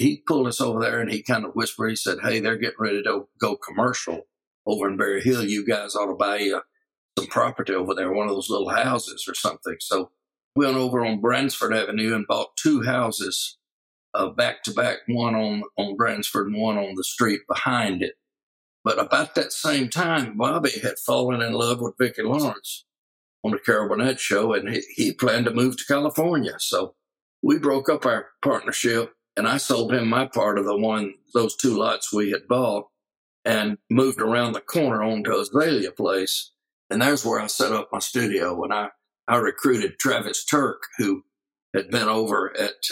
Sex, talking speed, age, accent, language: male, 195 wpm, 60-79, American, English